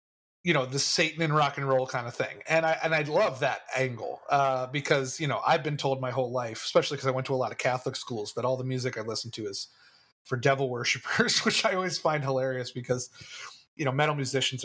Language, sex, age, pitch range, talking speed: English, male, 30-49, 130-165 Hz, 240 wpm